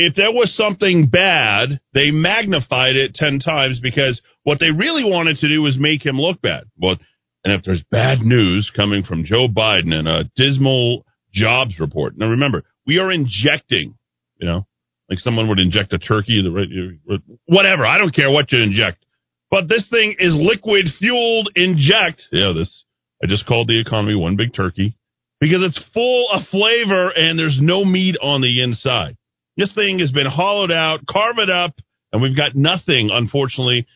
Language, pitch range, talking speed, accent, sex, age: English, 105-165 Hz, 180 wpm, American, male, 40-59